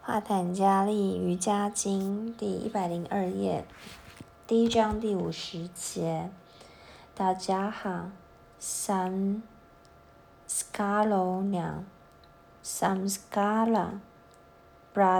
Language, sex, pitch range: Chinese, female, 175-210 Hz